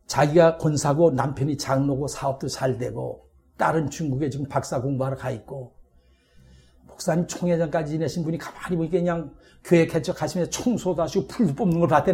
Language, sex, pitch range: Korean, male, 140-185 Hz